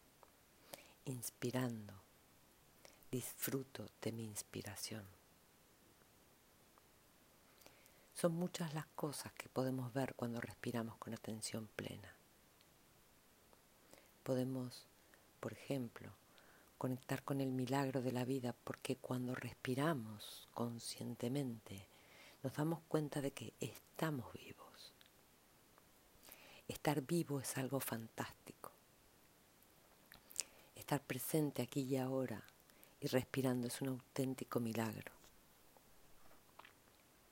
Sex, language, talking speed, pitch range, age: female, Spanish, 85 wpm, 120-140 Hz, 50-69